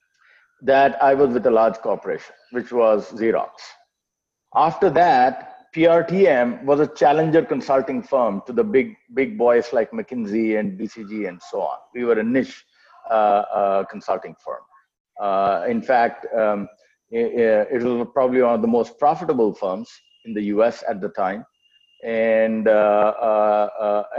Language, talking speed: English, 155 wpm